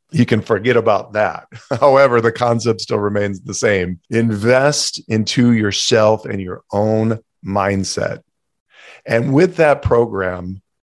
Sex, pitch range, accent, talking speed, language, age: male, 100-135 Hz, American, 125 wpm, English, 40-59